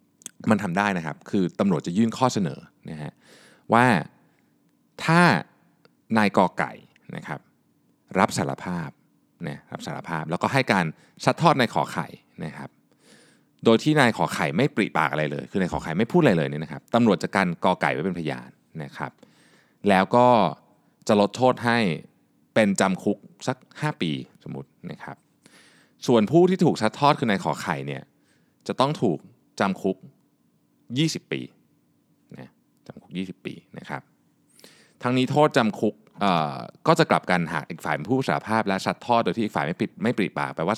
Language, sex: Thai, male